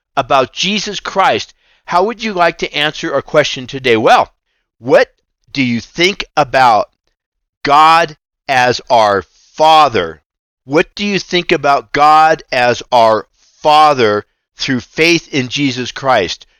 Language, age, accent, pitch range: English, 50-69, American, 125-170 Hz